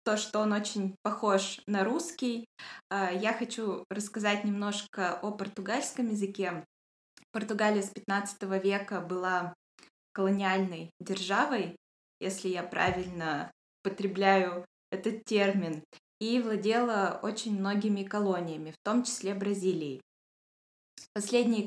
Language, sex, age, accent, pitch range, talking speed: Russian, female, 20-39, native, 190-220 Hz, 100 wpm